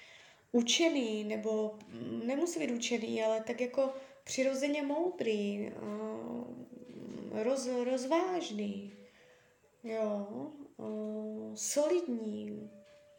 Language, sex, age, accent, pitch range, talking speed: Czech, female, 20-39, native, 220-285 Hz, 55 wpm